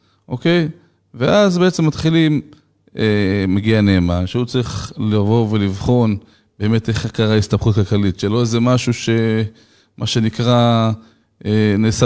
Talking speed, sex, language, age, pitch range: 115 wpm, male, Hebrew, 20-39, 105-125 Hz